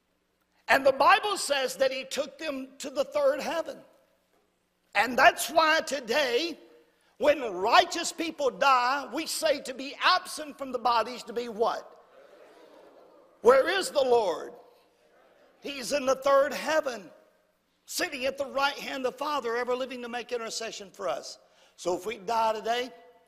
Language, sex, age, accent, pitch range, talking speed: English, male, 60-79, American, 220-295 Hz, 155 wpm